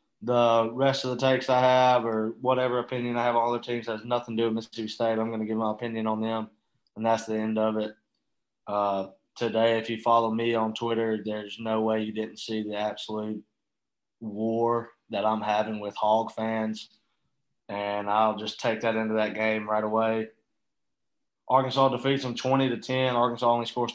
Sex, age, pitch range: male, 20-39, 110-120 Hz